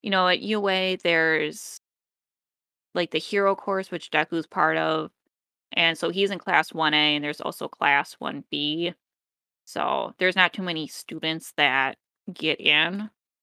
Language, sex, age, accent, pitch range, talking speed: English, female, 20-39, American, 160-200 Hz, 155 wpm